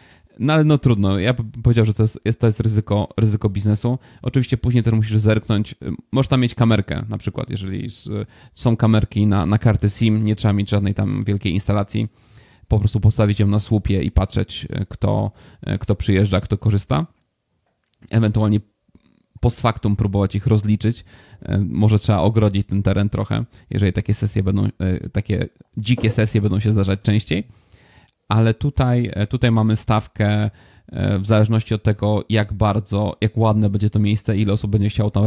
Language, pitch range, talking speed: Polish, 100-110 Hz, 165 wpm